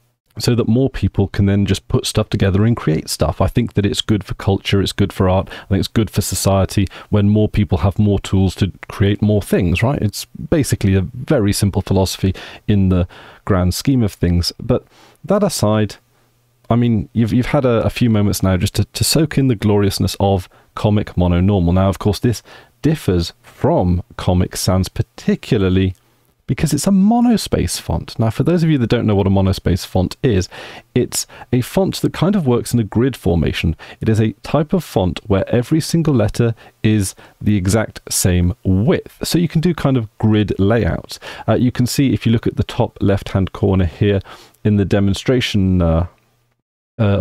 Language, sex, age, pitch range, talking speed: English, male, 30-49, 95-120 Hz, 200 wpm